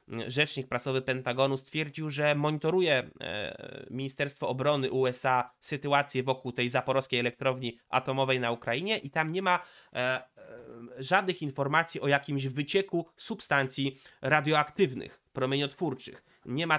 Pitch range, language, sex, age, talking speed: 130-155 Hz, Polish, male, 20-39, 110 wpm